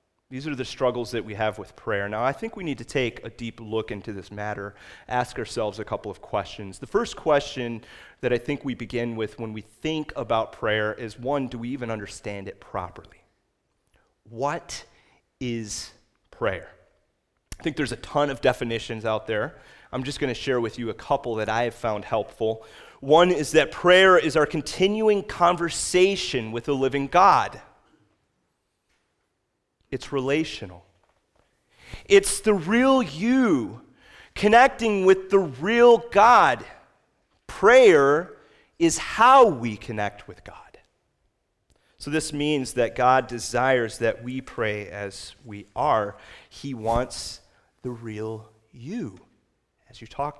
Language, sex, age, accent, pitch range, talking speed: English, male, 30-49, American, 115-165 Hz, 150 wpm